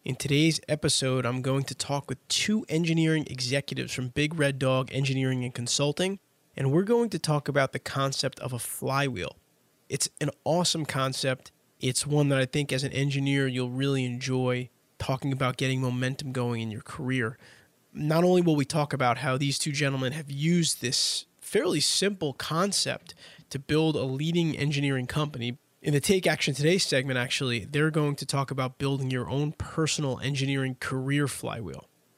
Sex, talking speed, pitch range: male, 175 wpm, 130-145 Hz